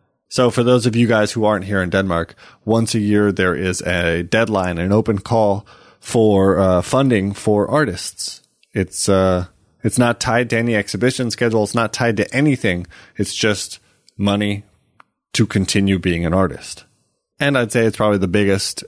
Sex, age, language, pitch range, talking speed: male, 20-39, English, 100-120 Hz, 175 wpm